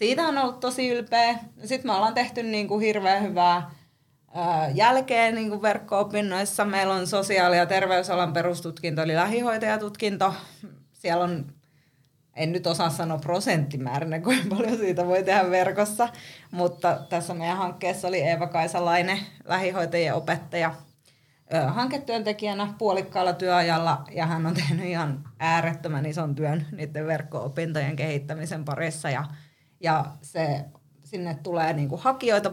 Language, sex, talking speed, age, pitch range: Finnish, female, 120 wpm, 30-49, 155-190 Hz